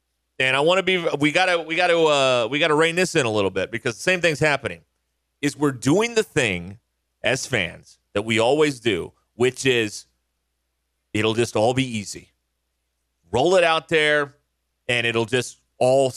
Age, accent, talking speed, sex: 30-49, American, 195 wpm, male